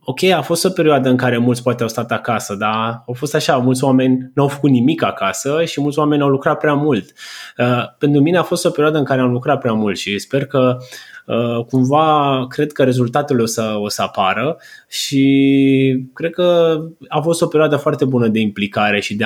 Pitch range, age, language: 120-150 Hz, 20-39, Romanian